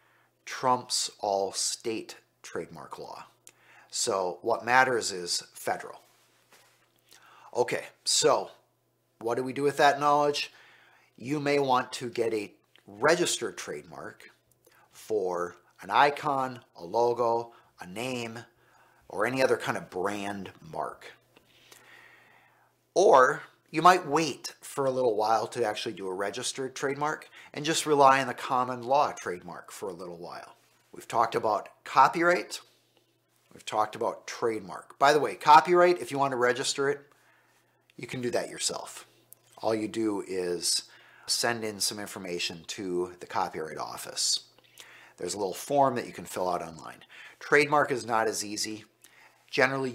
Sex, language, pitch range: male, English, 105-135 Hz